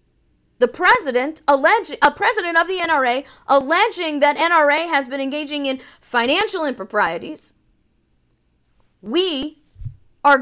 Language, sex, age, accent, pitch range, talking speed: English, female, 40-59, American, 215-335 Hz, 110 wpm